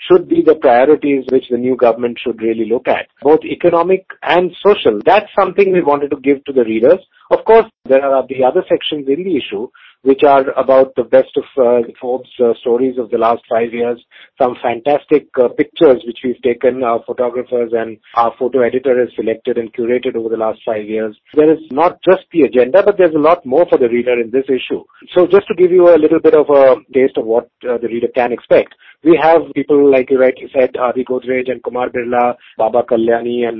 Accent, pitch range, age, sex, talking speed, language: Indian, 120-165 Hz, 50-69, male, 220 wpm, English